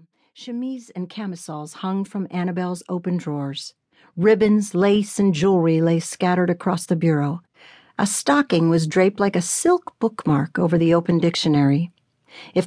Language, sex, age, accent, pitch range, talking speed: English, female, 50-69, American, 165-210 Hz, 140 wpm